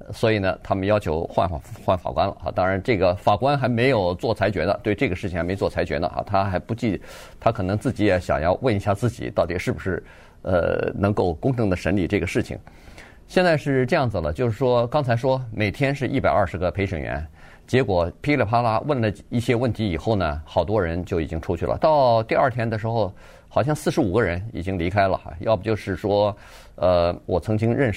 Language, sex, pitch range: Chinese, male, 90-115 Hz